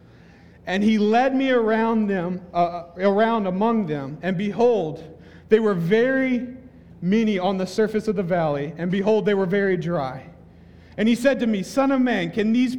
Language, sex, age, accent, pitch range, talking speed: English, male, 50-69, American, 165-240 Hz, 180 wpm